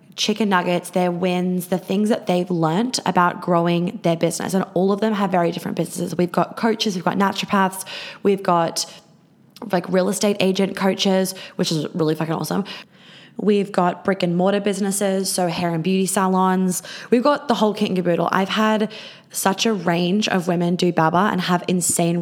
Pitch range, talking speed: 175-210 Hz, 185 wpm